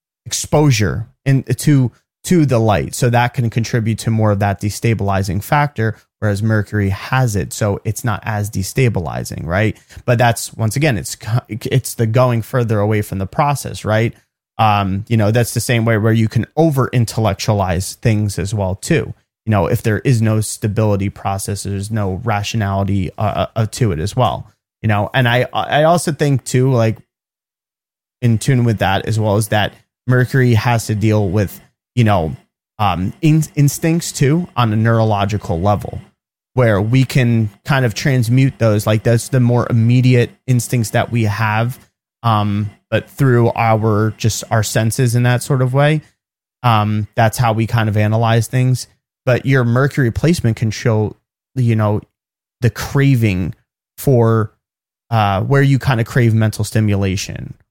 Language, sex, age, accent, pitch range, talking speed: English, male, 30-49, American, 105-125 Hz, 165 wpm